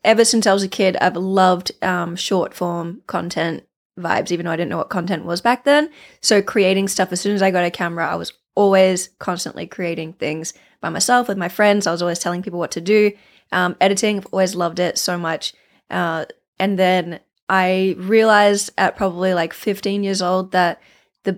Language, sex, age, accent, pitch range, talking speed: English, female, 20-39, Australian, 180-205 Hz, 205 wpm